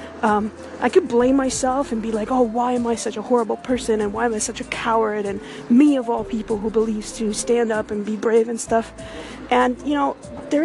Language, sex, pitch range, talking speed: English, female, 215-245 Hz, 235 wpm